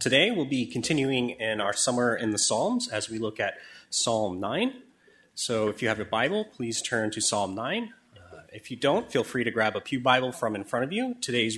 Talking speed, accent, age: 230 wpm, American, 30-49